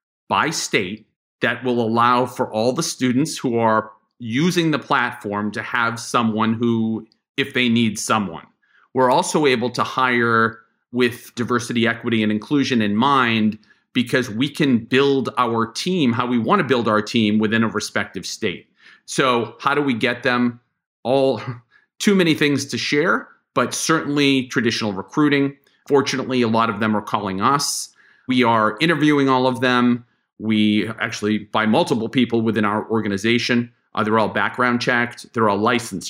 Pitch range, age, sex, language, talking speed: 110-135 Hz, 40-59, male, English, 160 wpm